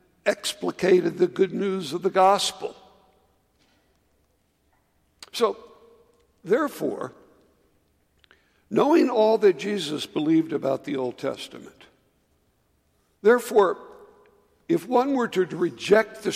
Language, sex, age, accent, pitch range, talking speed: English, male, 60-79, American, 175-230 Hz, 90 wpm